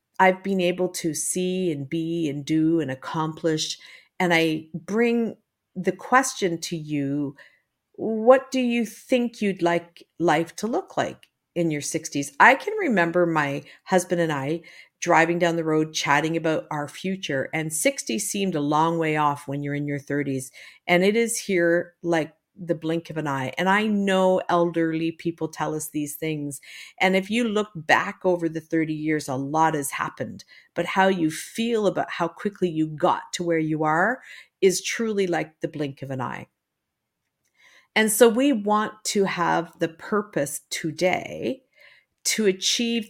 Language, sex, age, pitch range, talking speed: English, female, 50-69, 155-200 Hz, 170 wpm